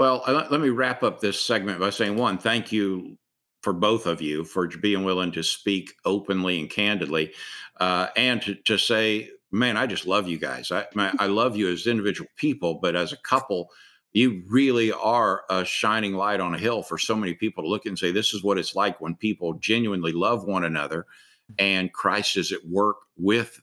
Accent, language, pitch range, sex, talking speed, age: American, English, 95-110 Hz, male, 205 wpm, 50-69